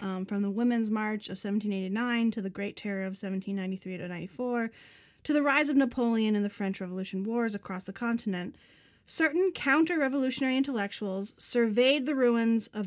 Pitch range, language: 200-250 Hz, English